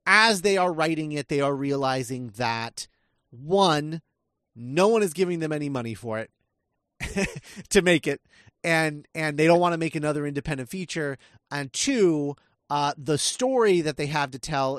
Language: English